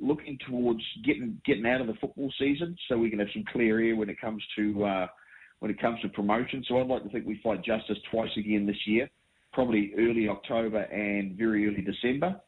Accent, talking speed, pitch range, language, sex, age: Australian, 215 wpm, 100-120 Hz, English, male, 40-59